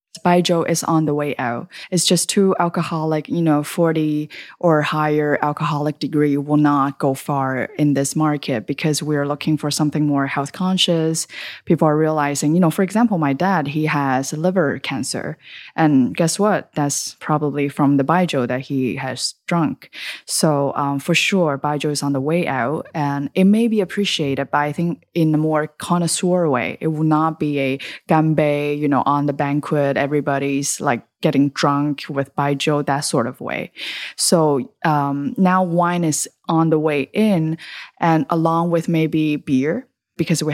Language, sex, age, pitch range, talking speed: English, female, 20-39, 145-170 Hz, 175 wpm